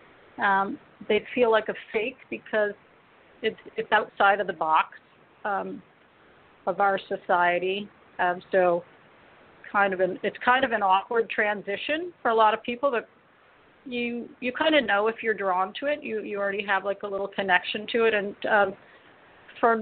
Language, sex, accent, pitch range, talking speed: English, female, American, 195-245 Hz, 175 wpm